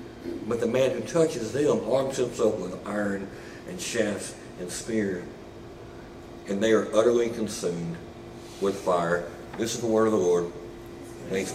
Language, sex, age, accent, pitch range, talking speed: English, male, 60-79, American, 100-130 Hz, 150 wpm